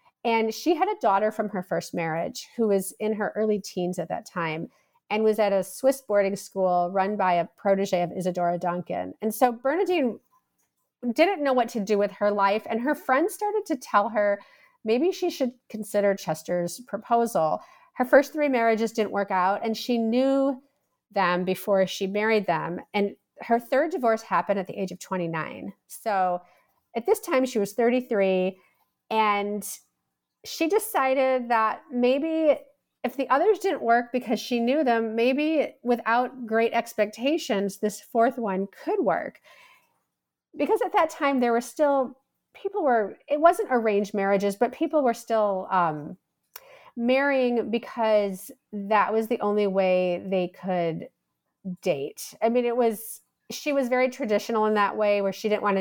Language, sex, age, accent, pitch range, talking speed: English, female, 40-59, American, 195-260 Hz, 165 wpm